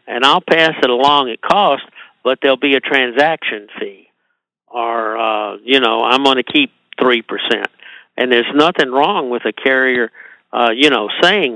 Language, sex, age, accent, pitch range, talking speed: English, male, 60-79, American, 115-140 Hz, 170 wpm